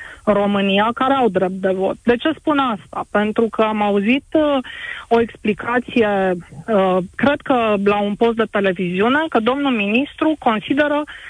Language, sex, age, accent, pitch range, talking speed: Romanian, female, 30-49, native, 205-270 Hz, 160 wpm